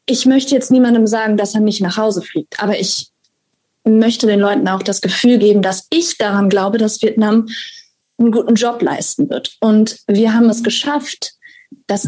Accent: German